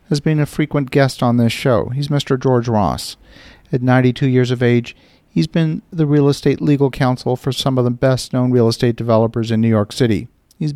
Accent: American